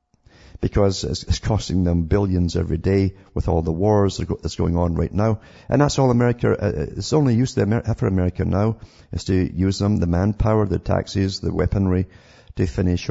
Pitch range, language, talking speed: 85-100 Hz, English, 175 wpm